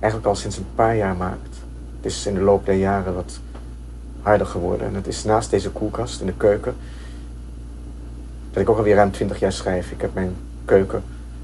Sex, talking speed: male, 200 wpm